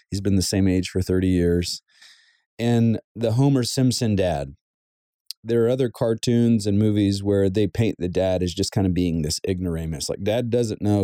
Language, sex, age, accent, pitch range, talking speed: English, male, 30-49, American, 95-125 Hz, 190 wpm